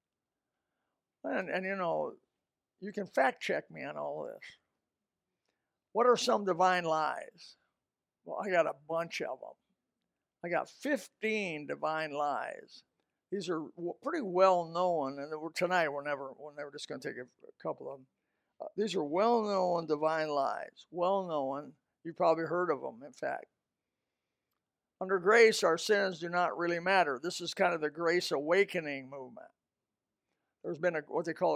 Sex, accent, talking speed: male, American, 155 wpm